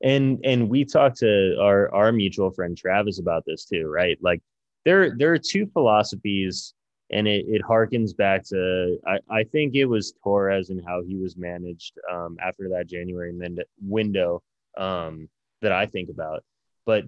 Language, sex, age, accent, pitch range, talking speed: English, male, 20-39, American, 90-110 Hz, 170 wpm